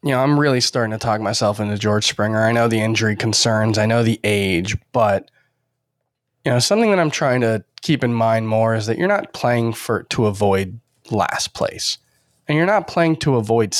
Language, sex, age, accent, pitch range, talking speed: English, male, 20-39, American, 105-135 Hz, 210 wpm